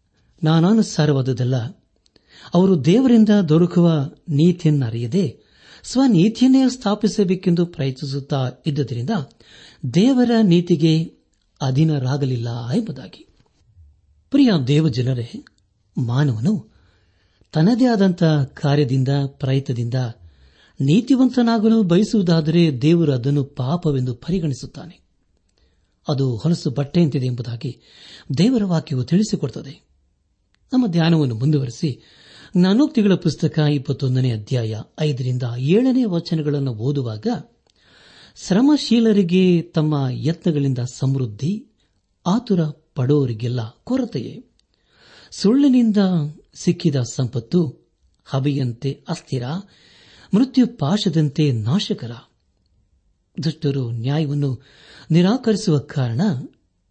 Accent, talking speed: native, 65 wpm